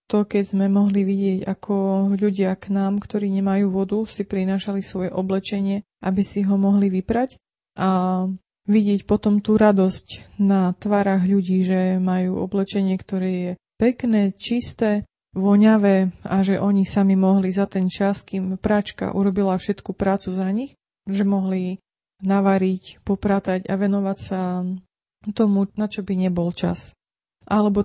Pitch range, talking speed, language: 190-205 Hz, 140 wpm, Slovak